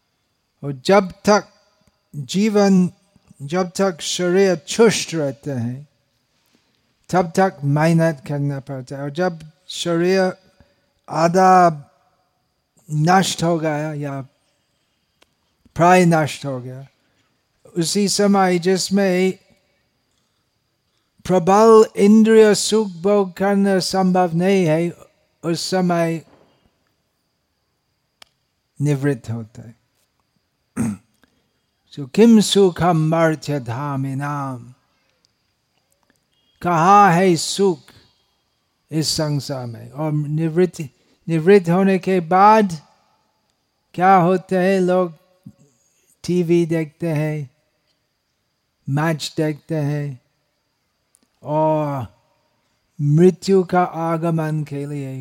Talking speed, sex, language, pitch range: 80 wpm, male, Hindi, 140-185 Hz